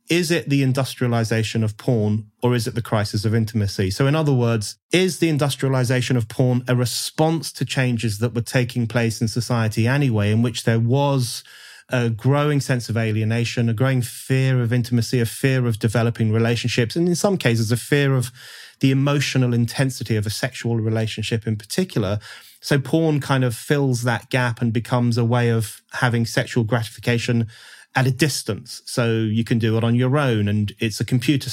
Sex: male